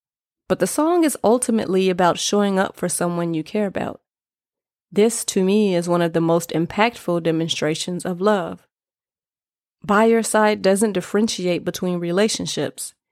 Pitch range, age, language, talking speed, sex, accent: 175-210 Hz, 30-49, English, 145 wpm, female, American